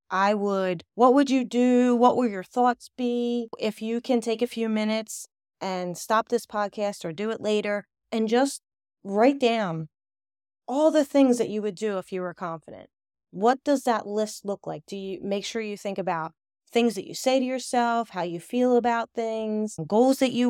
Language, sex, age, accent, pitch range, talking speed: English, female, 30-49, American, 190-245 Hz, 200 wpm